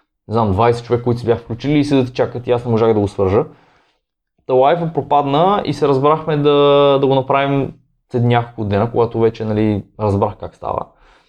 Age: 20-39